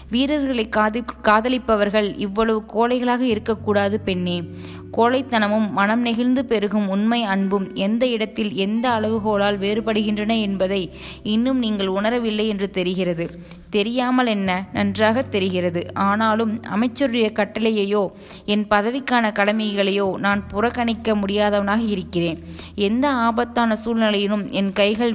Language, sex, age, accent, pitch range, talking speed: Tamil, female, 20-39, native, 195-230 Hz, 105 wpm